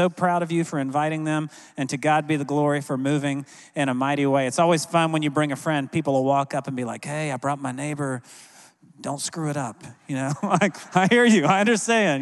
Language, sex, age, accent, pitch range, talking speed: English, male, 40-59, American, 145-175 Hz, 245 wpm